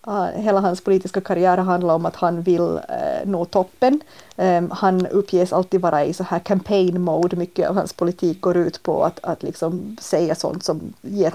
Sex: female